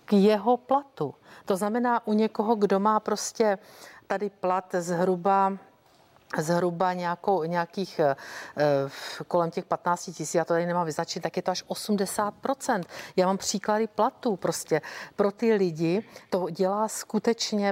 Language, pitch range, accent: Czech, 175-215 Hz, native